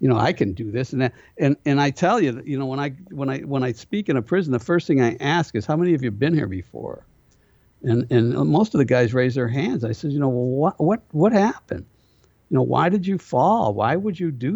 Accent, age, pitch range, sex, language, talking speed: American, 60-79, 120-170 Hz, male, English, 270 wpm